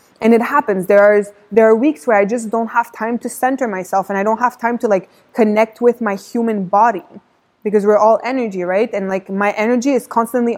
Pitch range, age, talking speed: 205-235 Hz, 20-39, 225 wpm